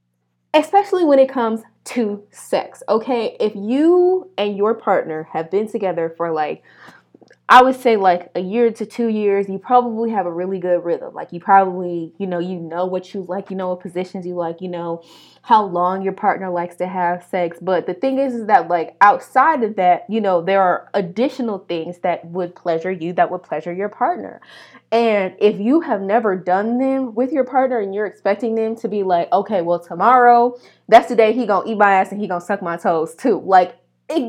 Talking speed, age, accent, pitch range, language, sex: 210 wpm, 20-39, American, 180-245 Hz, English, female